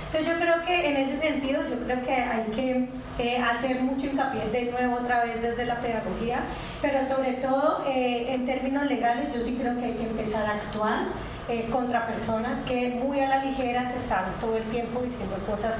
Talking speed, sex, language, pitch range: 205 wpm, female, Spanish, 220-260 Hz